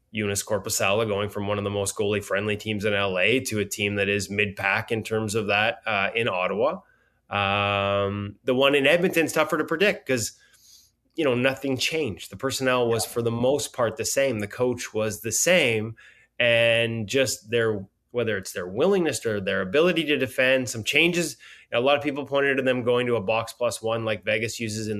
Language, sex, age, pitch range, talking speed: English, male, 20-39, 110-140 Hz, 200 wpm